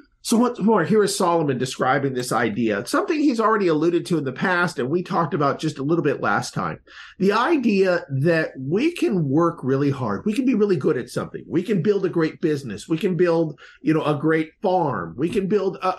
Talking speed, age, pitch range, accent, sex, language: 220 wpm, 50-69, 145-215 Hz, American, male, English